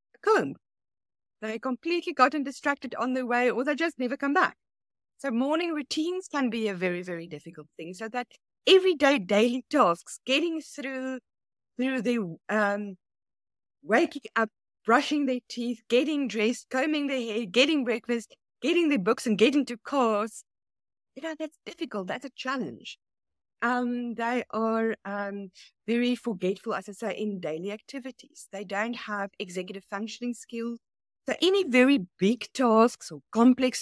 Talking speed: 155 wpm